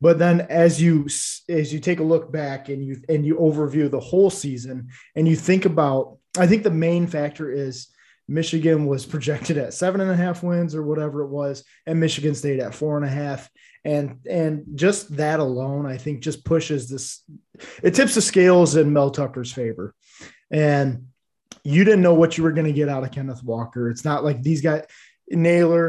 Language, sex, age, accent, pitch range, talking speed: English, male, 20-39, American, 135-165 Hz, 195 wpm